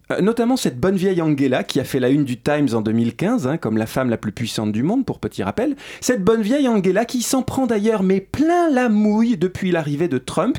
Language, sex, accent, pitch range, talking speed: French, male, French, 130-195 Hz, 240 wpm